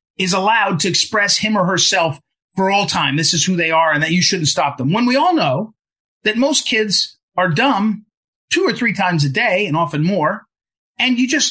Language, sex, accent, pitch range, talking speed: English, male, American, 175-255 Hz, 220 wpm